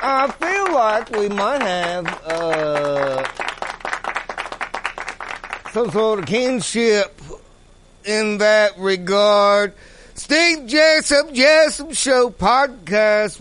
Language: English